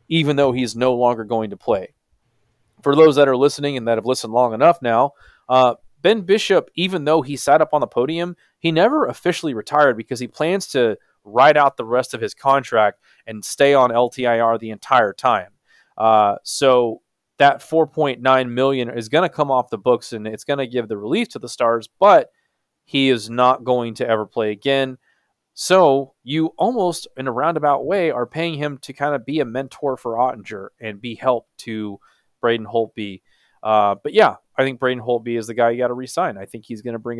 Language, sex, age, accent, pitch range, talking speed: English, male, 30-49, American, 115-145 Hz, 205 wpm